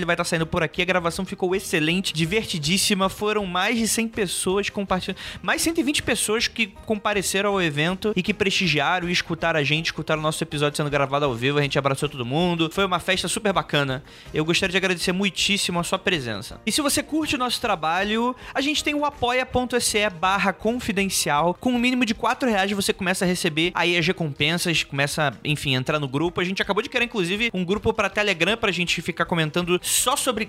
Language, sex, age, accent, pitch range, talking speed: Portuguese, male, 20-39, Brazilian, 165-220 Hz, 205 wpm